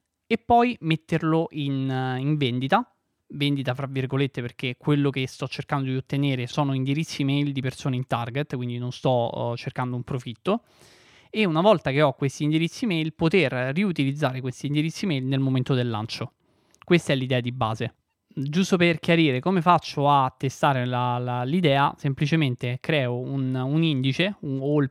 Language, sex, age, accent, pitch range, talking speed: Italian, male, 20-39, native, 125-155 Hz, 165 wpm